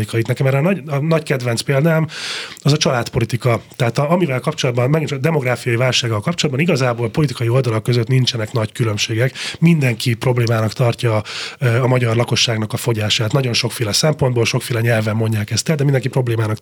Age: 30-49